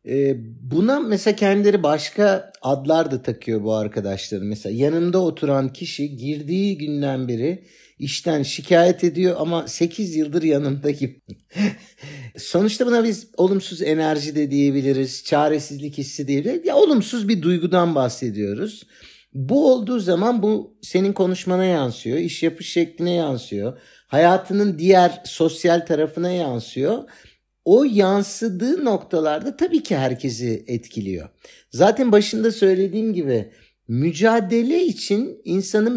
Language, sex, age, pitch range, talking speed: Turkish, male, 50-69, 140-210 Hz, 115 wpm